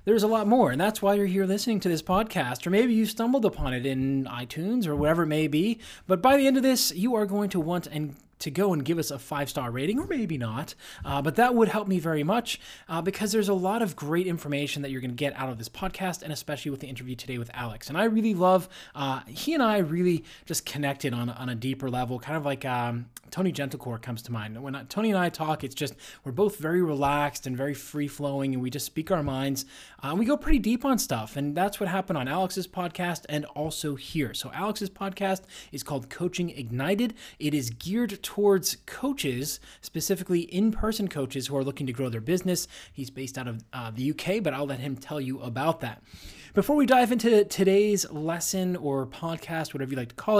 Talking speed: 230 wpm